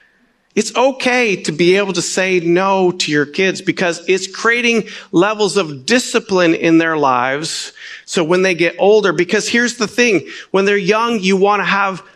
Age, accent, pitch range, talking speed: 40-59, American, 180-215 Hz, 180 wpm